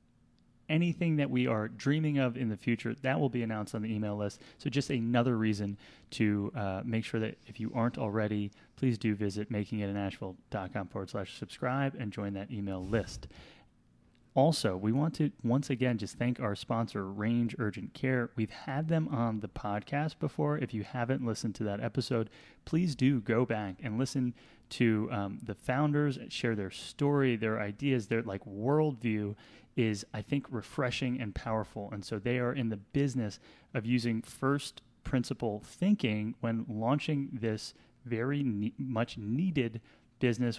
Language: English